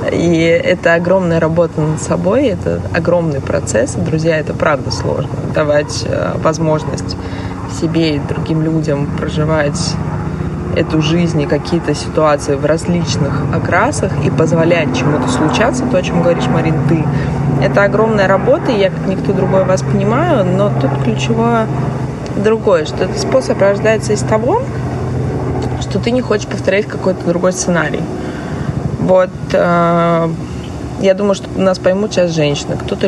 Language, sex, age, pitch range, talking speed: Russian, female, 20-39, 145-185 Hz, 140 wpm